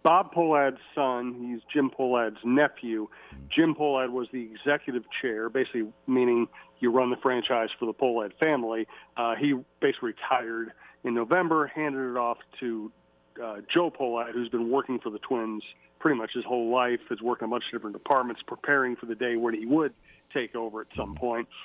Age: 40-59